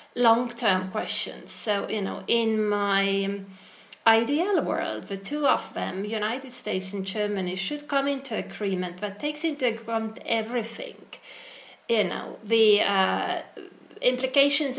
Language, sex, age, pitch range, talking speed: English, female, 30-49, 195-240 Hz, 125 wpm